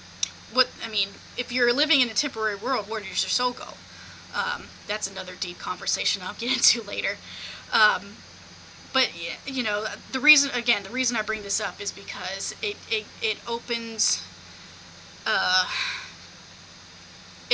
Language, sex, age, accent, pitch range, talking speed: English, female, 10-29, American, 195-245 Hz, 150 wpm